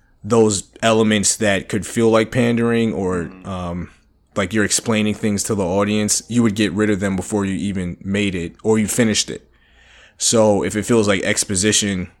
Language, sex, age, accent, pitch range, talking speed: English, male, 20-39, American, 95-110 Hz, 180 wpm